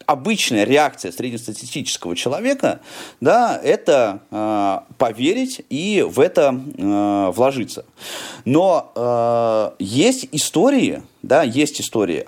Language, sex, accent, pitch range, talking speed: Russian, male, native, 100-140 Hz, 90 wpm